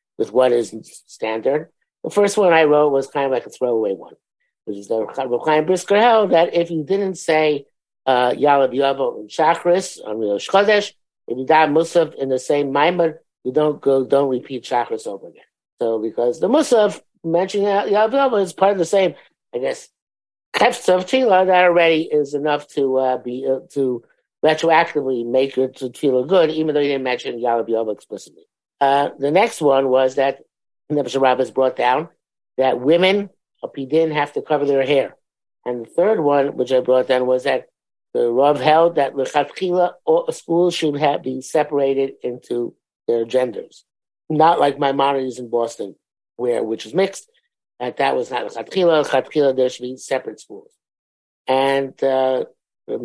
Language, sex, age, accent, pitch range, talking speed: English, male, 50-69, American, 130-170 Hz, 170 wpm